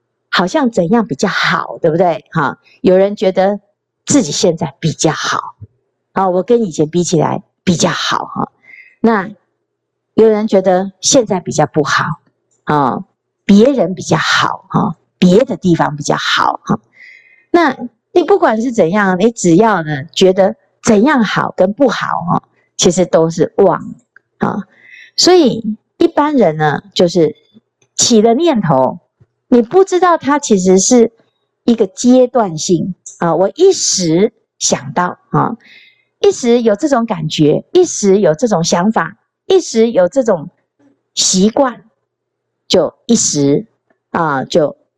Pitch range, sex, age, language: 185-250 Hz, female, 50-69, Chinese